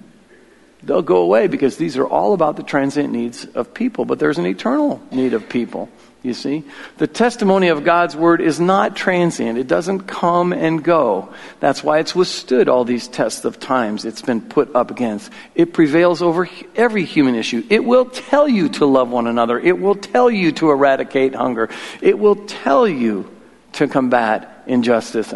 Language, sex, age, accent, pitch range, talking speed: English, male, 50-69, American, 130-180 Hz, 180 wpm